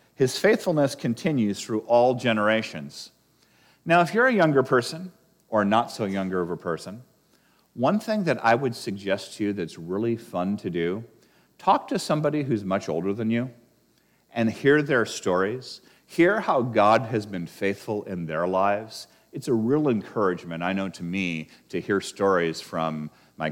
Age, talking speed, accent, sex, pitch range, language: 40-59, 170 wpm, American, male, 80-120 Hz, English